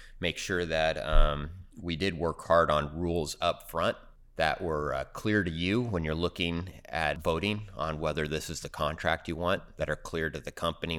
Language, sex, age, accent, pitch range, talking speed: English, male, 30-49, American, 70-85 Hz, 200 wpm